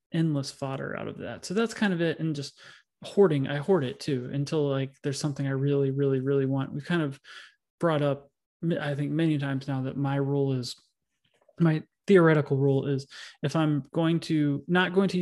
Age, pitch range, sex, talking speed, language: 20-39, 140-175 Hz, male, 205 wpm, English